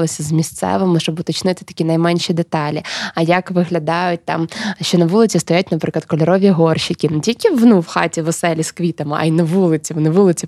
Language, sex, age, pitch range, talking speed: Ukrainian, female, 20-39, 160-185 Hz, 185 wpm